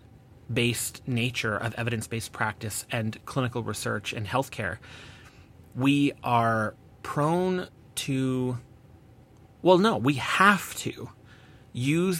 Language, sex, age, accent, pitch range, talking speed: English, male, 30-49, American, 110-135 Hz, 100 wpm